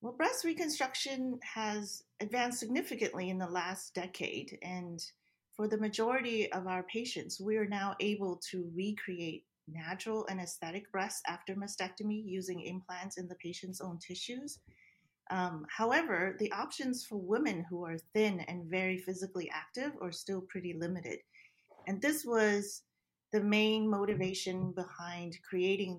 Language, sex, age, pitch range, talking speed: English, female, 30-49, 170-215 Hz, 140 wpm